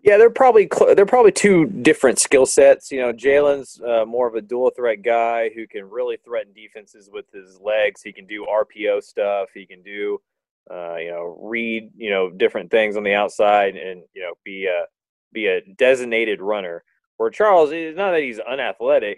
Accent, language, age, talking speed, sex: American, English, 30-49, 195 wpm, male